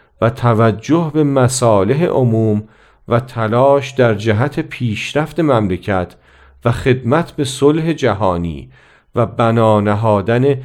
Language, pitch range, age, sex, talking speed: Persian, 105-145 Hz, 40-59, male, 100 wpm